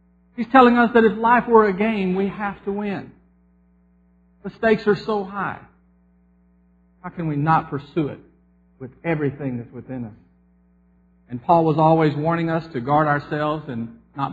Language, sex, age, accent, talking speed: English, male, 50-69, American, 165 wpm